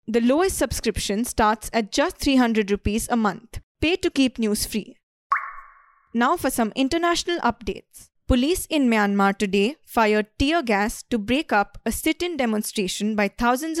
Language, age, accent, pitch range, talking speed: English, 20-39, Indian, 215-275 Hz, 150 wpm